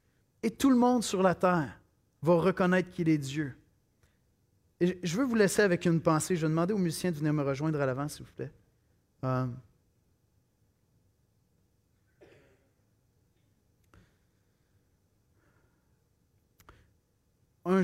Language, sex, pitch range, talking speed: French, male, 115-185 Hz, 120 wpm